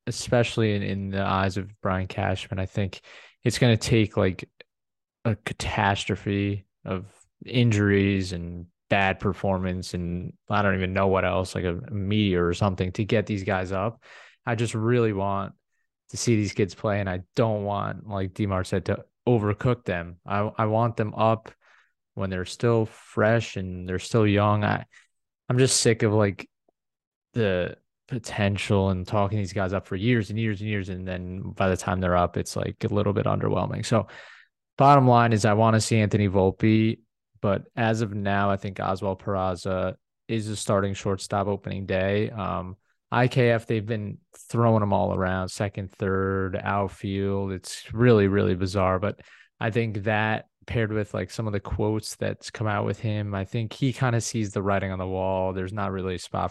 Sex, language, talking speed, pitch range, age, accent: male, English, 185 wpm, 95-110 Hz, 20-39, American